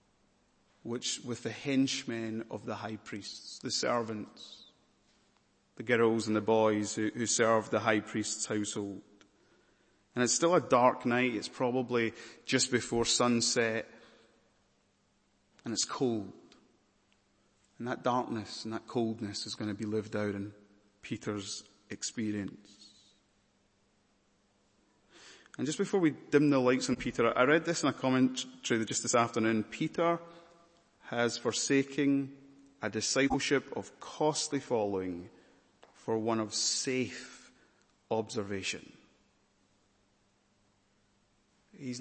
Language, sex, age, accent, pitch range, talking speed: English, male, 30-49, British, 105-125 Hz, 120 wpm